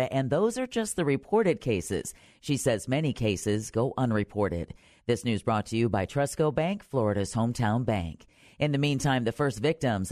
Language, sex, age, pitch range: English, female, 40-59, 110-145 Hz